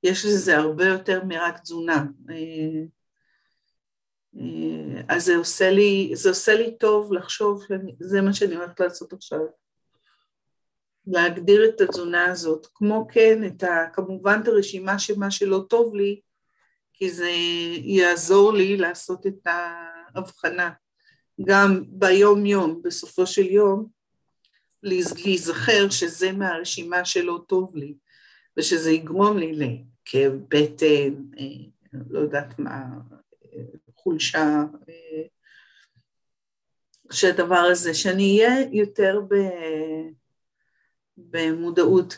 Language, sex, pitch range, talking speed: Hebrew, female, 170-210 Hz, 100 wpm